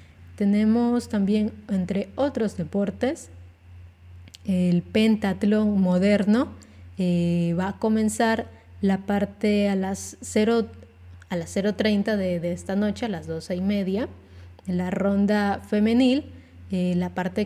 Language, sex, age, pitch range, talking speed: Spanish, female, 20-39, 175-220 Hz, 120 wpm